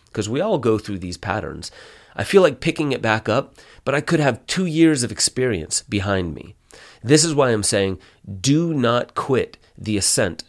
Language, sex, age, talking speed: English, male, 30-49, 195 wpm